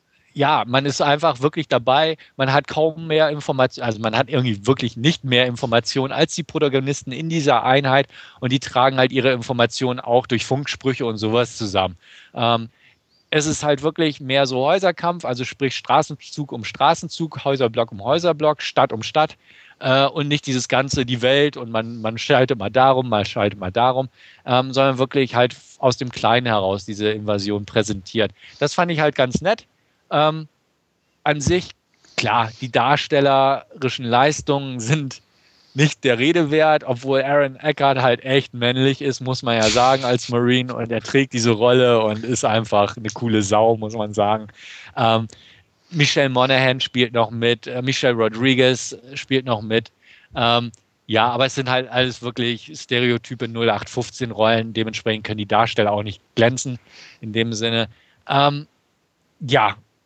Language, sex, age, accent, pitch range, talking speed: German, male, 40-59, German, 115-140 Hz, 160 wpm